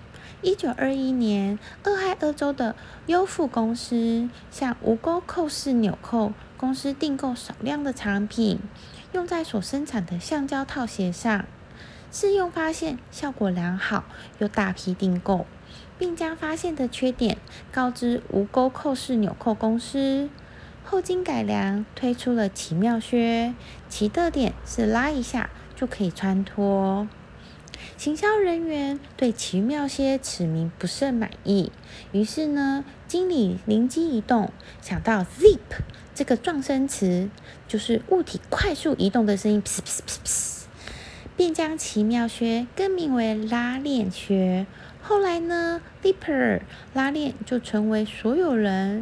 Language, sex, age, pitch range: Chinese, female, 30-49, 210-290 Hz